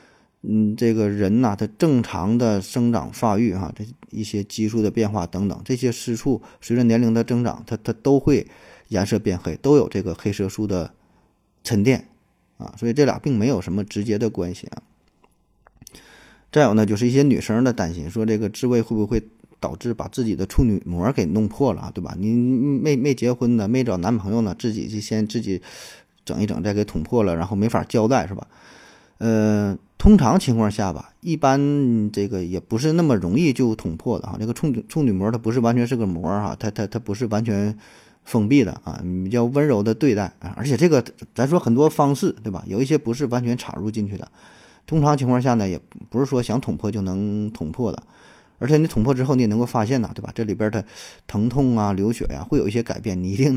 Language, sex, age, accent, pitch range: Chinese, male, 20-39, native, 100-125 Hz